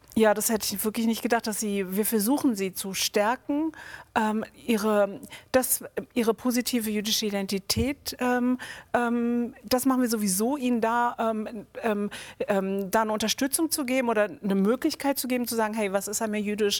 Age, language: 40-59, German